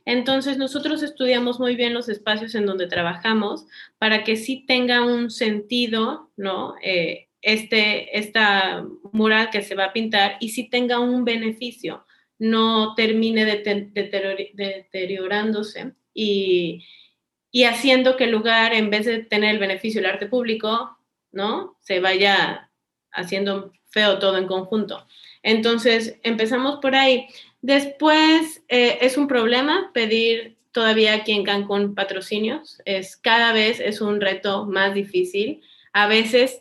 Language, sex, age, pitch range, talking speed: Spanish, female, 20-39, 200-240 Hz, 145 wpm